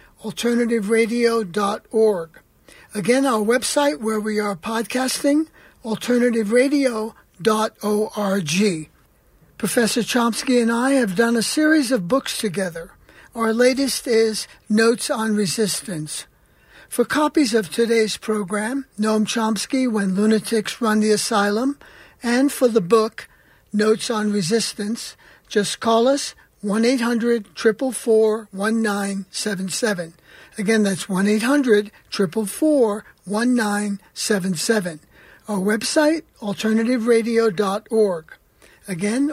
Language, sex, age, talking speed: English, male, 60-79, 90 wpm